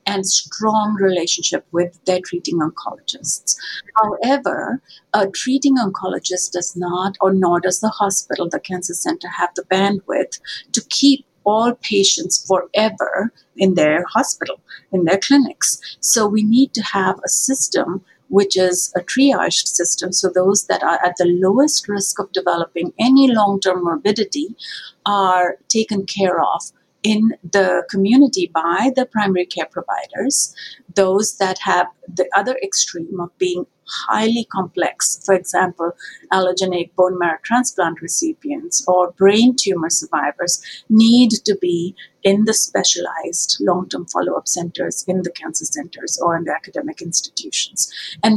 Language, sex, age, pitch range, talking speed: English, female, 50-69, 180-220 Hz, 140 wpm